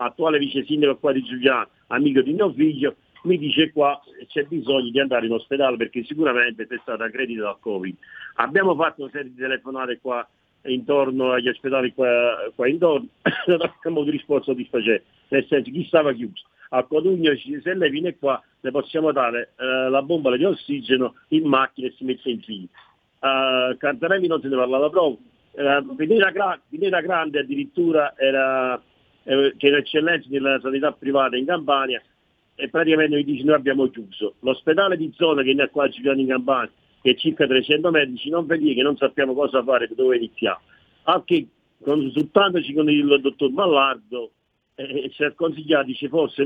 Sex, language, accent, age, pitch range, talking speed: male, Italian, native, 50-69, 130-155 Hz, 170 wpm